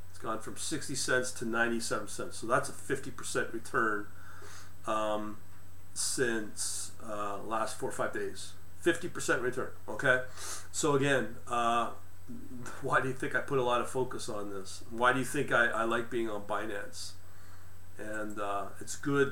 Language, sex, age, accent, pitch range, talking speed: English, male, 40-59, American, 95-130 Hz, 160 wpm